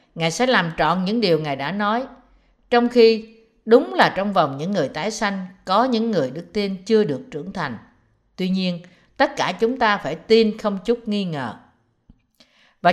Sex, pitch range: female, 170-250 Hz